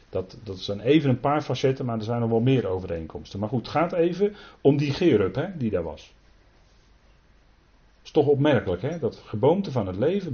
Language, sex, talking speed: Dutch, male, 210 wpm